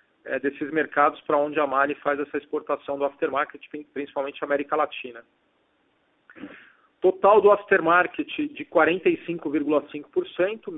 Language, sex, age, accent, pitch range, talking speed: Portuguese, male, 40-59, Brazilian, 145-175 Hz, 110 wpm